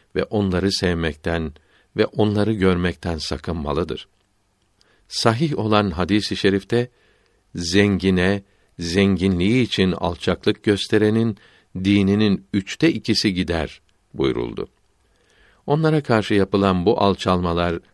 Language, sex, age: Turkish, male, 60-79